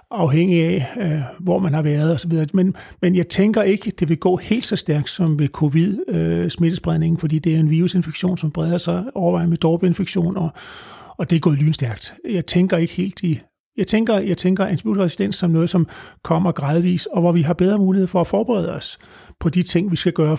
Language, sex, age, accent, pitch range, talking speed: Danish, male, 30-49, native, 160-185 Hz, 220 wpm